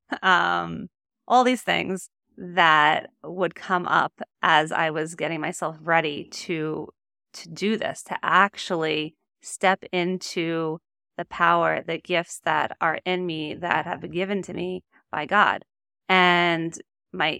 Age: 30-49